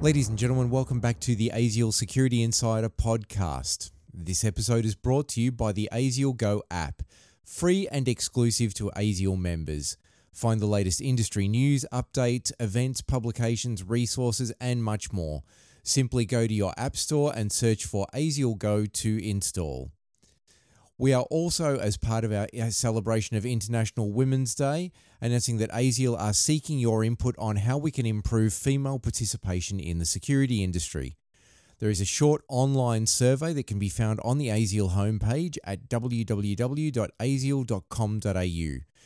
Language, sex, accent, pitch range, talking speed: English, male, Australian, 100-125 Hz, 150 wpm